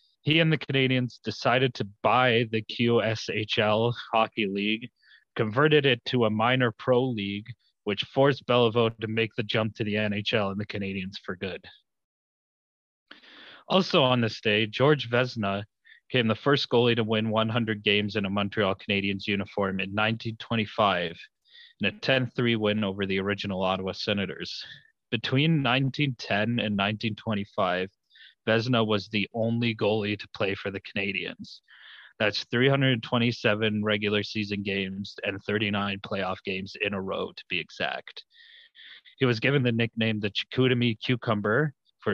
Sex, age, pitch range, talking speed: male, 30-49, 100-125 Hz, 140 wpm